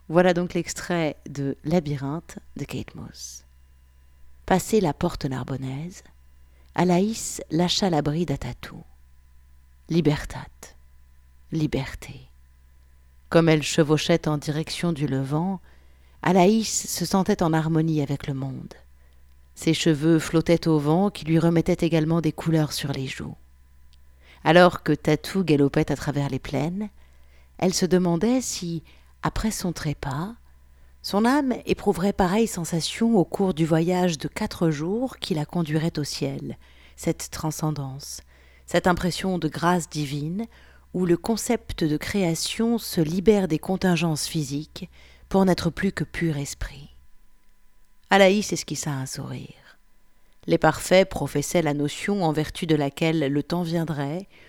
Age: 50-69